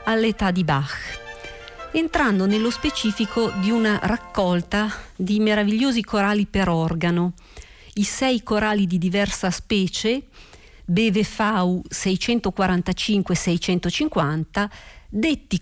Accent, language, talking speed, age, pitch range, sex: native, Italian, 90 wpm, 50-69, 175-220 Hz, female